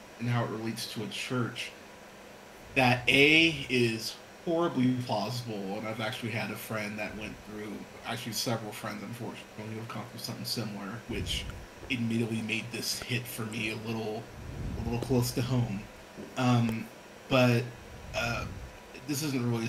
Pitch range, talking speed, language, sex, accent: 110-130 Hz, 150 wpm, English, male, American